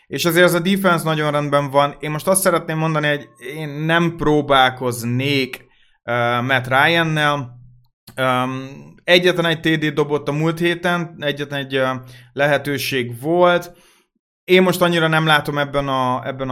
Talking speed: 140 wpm